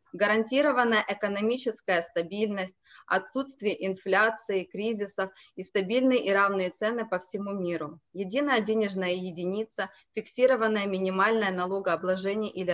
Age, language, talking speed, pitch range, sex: 20-39, Russian, 100 wpm, 190-230 Hz, female